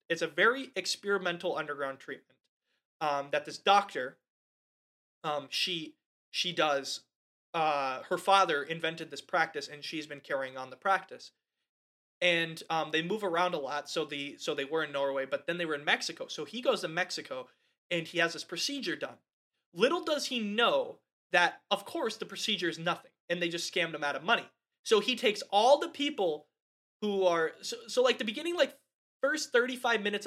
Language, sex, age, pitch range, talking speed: English, male, 20-39, 150-200 Hz, 185 wpm